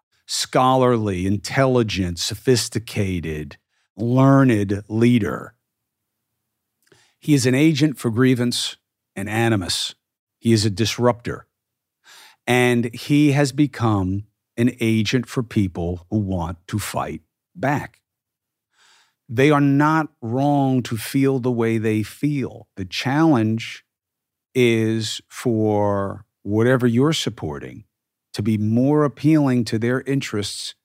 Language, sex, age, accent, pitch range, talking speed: English, male, 50-69, American, 105-130 Hz, 105 wpm